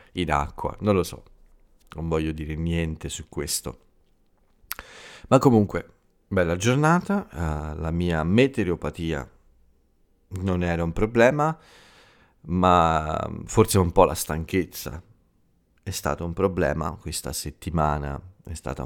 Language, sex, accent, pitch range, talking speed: Italian, male, native, 75-95 Hz, 110 wpm